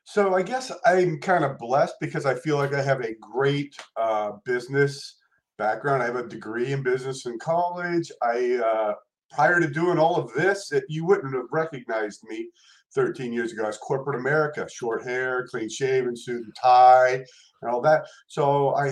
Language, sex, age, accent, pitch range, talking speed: English, male, 50-69, American, 125-175 Hz, 185 wpm